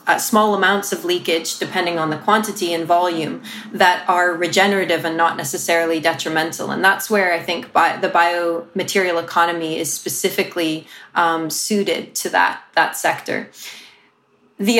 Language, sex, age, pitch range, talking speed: English, female, 20-39, 165-190 Hz, 140 wpm